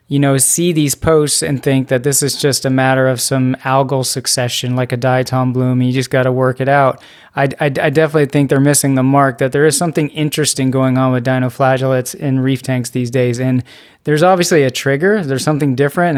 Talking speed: 220 wpm